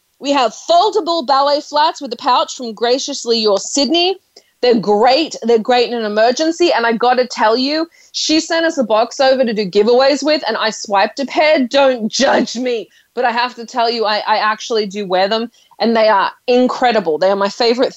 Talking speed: 210 wpm